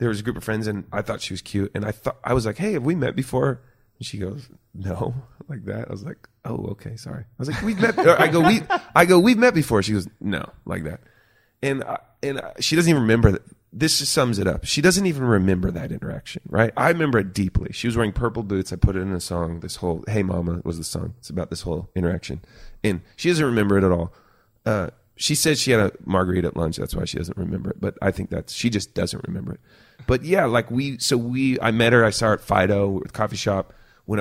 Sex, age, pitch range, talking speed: male, 30-49, 95-120 Hz, 260 wpm